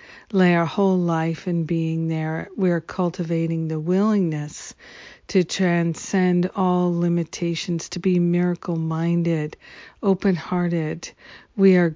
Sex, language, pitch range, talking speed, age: female, English, 165-185 Hz, 105 wpm, 50-69